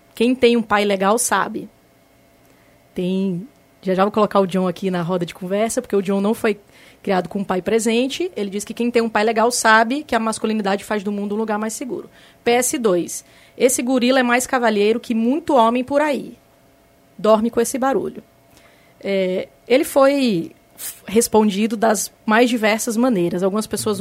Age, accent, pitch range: 20-39, Brazilian, 200-245 Hz